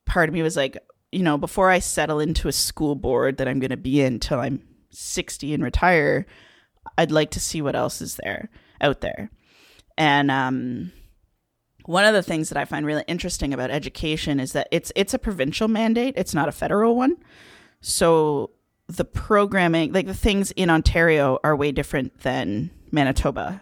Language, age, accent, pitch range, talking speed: English, 30-49, American, 140-180 Hz, 185 wpm